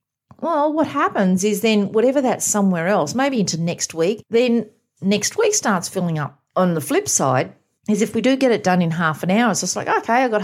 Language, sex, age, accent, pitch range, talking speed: English, female, 40-59, Australian, 170-240 Hz, 230 wpm